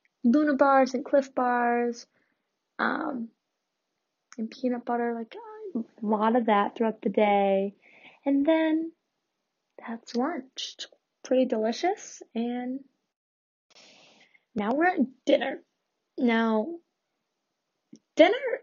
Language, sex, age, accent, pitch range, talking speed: English, female, 10-29, American, 215-270 Hz, 100 wpm